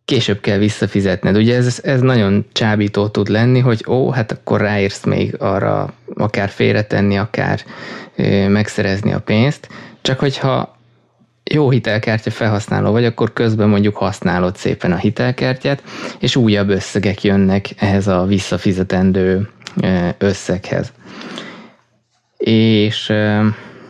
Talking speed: 115 wpm